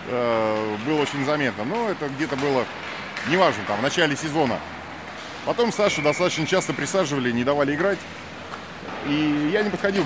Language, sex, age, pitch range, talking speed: Russian, male, 30-49, 100-140 Hz, 145 wpm